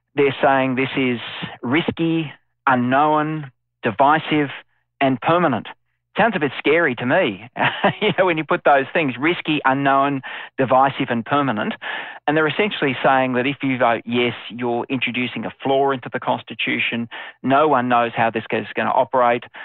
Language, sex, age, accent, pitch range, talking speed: English, male, 40-59, Australian, 120-140 Hz, 160 wpm